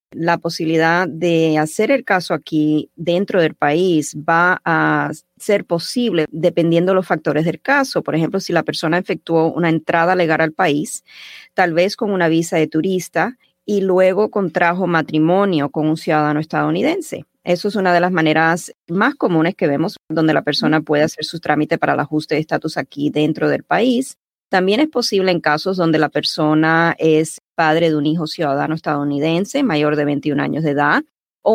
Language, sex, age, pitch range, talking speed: Spanish, female, 30-49, 155-180 Hz, 180 wpm